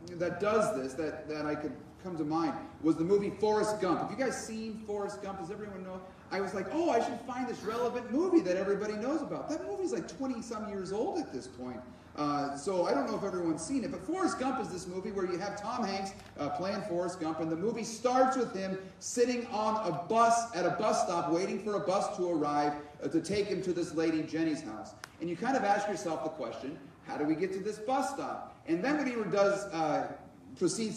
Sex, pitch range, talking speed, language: male, 165-245 Hz, 235 wpm, English